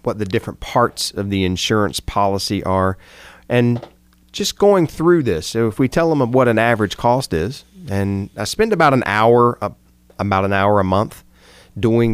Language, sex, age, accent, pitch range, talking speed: English, male, 30-49, American, 90-120 Hz, 180 wpm